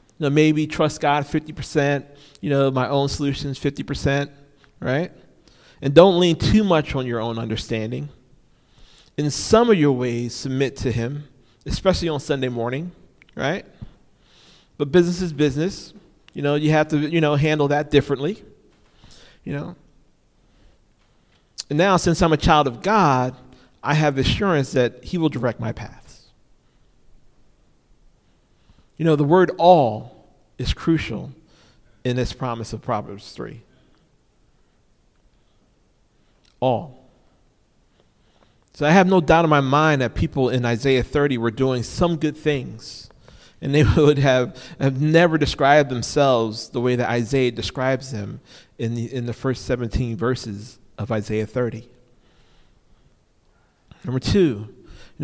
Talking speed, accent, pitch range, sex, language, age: 135 wpm, American, 120-150 Hz, male, English, 40-59